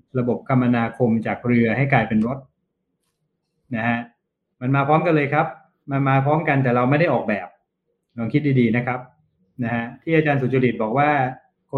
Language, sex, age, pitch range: Thai, male, 20-39, 120-150 Hz